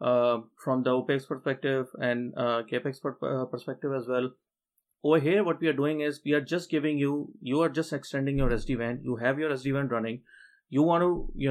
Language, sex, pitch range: English, male, 130-150 Hz